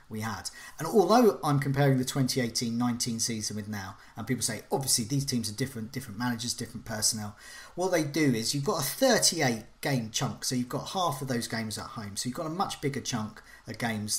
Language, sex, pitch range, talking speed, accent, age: English, male, 115-150 Hz, 220 wpm, British, 40-59